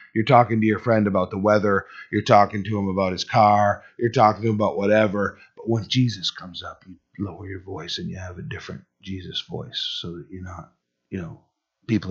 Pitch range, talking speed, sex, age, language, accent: 95-110 Hz, 220 wpm, male, 30-49, English, American